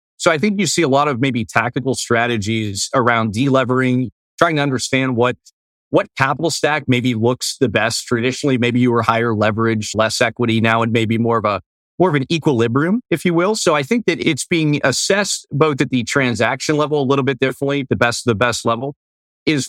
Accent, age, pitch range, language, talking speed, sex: American, 30-49, 115-145 Hz, English, 205 wpm, male